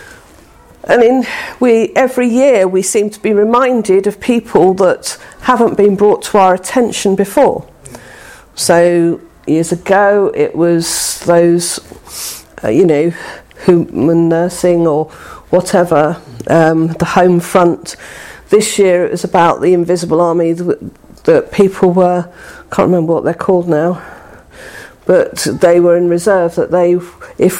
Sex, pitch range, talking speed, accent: female, 170-220 Hz, 135 wpm, British